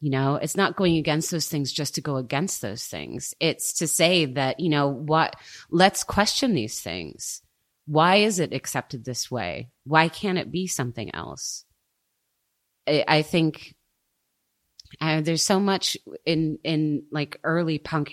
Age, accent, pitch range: 30-49, American, 135-160 Hz